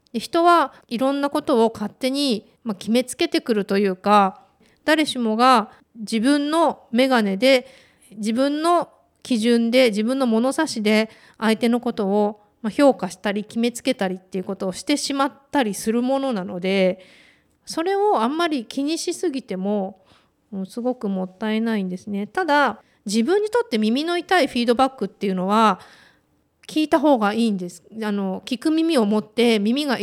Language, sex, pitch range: Japanese, female, 205-265 Hz